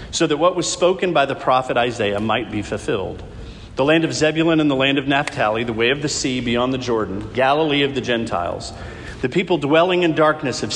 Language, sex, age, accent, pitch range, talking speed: English, male, 40-59, American, 115-160 Hz, 215 wpm